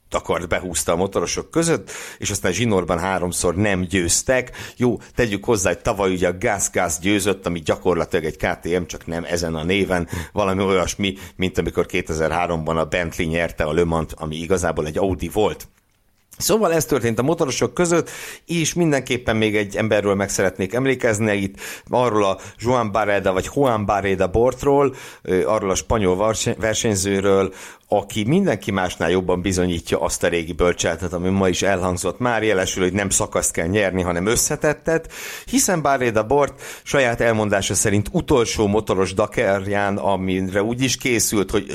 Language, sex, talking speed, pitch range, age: Hungarian, male, 155 wpm, 90-115 Hz, 60-79